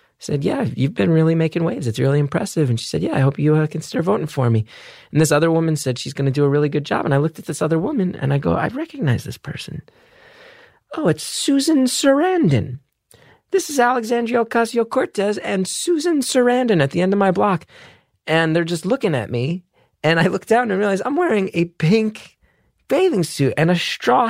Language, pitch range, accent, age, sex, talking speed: English, 150-215 Hz, American, 30-49, male, 215 wpm